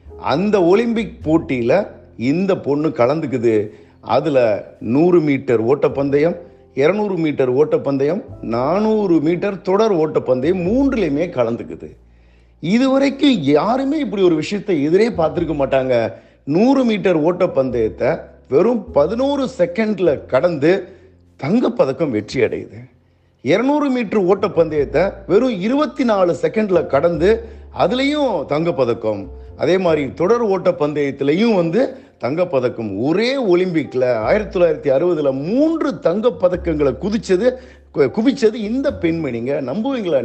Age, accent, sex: 50-69, native, male